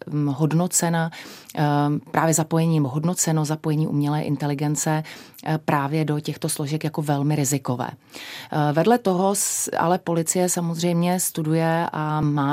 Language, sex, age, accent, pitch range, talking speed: Czech, female, 30-49, native, 145-160 Hz, 105 wpm